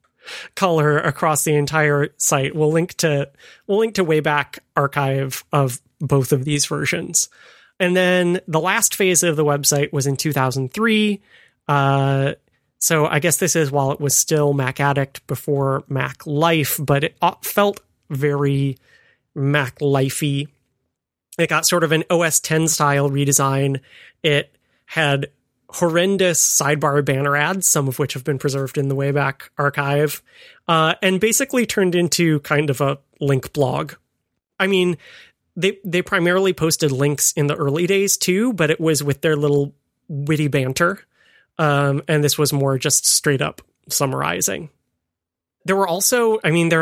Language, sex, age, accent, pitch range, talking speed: English, male, 30-49, American, 140-170 Hz, 155 wpm